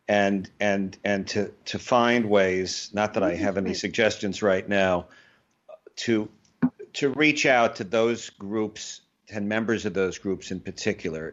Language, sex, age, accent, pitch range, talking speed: English, male, 50-69, American, 90-110 Hz, 155 wpm